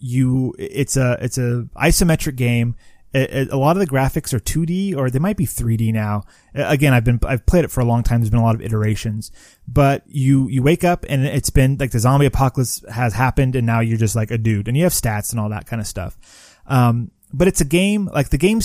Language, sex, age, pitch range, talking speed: English, male, 30-49, 115-150 Hz, 240 wpm